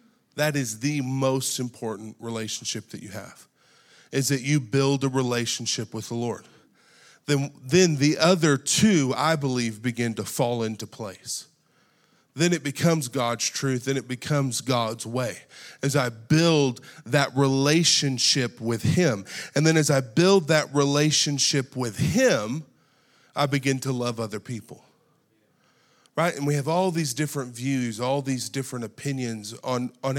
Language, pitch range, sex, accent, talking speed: English, 125-155 Hz, male, American, 150 wpm